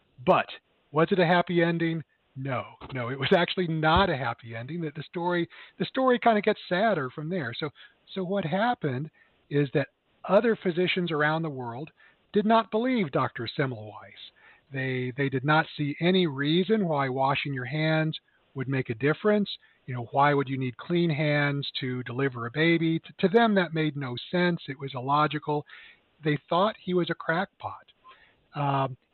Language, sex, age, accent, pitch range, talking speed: English, male, 50-69, American, 135-180 Hz, 175 wpm